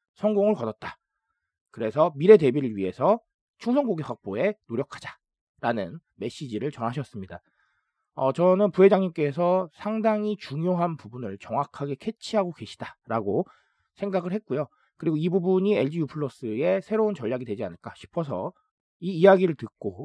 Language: Korean